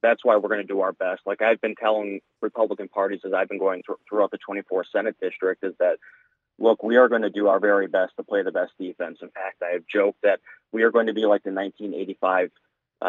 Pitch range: 100-150 Hz